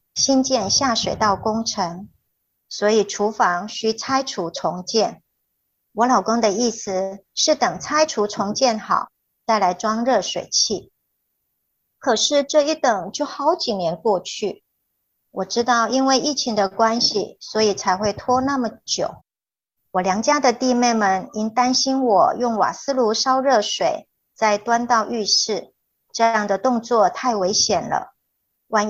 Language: Chinese